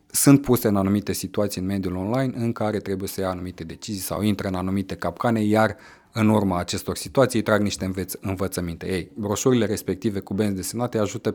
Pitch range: 95-115 Hz